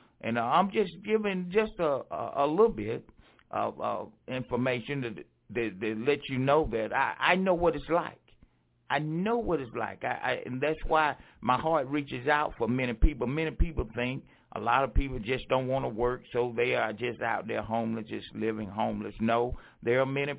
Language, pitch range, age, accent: English, 115-150 Hz, 60-79, American